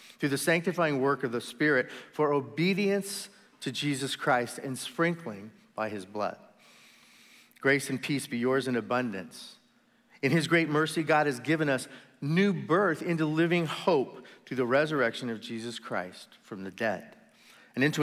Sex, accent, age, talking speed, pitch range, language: male, American, 40-59, 160 wpm, 125-165 Hz, English